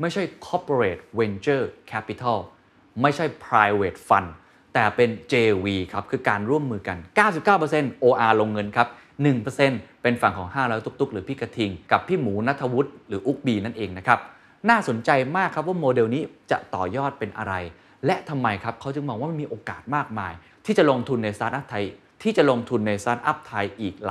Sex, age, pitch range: male, 20-39, 105-140 Hz